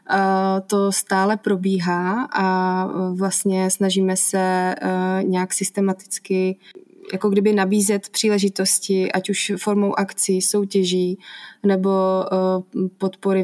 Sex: female